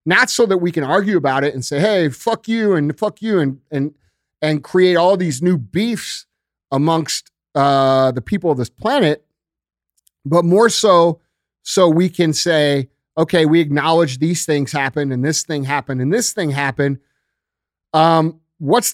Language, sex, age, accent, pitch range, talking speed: English, male, 30-49, American, 135-185 Hz, 170 wpm